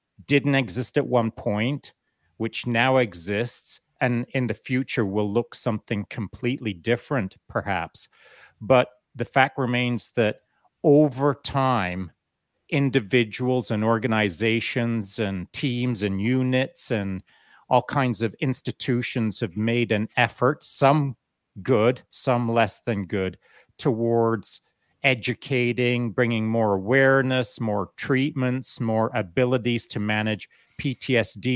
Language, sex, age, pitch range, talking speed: English, male, 40-59, 105-125 Hz, 110 wpm